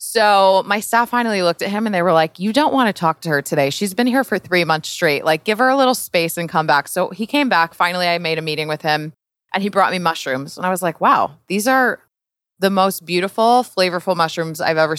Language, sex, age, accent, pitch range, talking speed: English, female, 20-39, American, 165-215 Hz, 260 wpm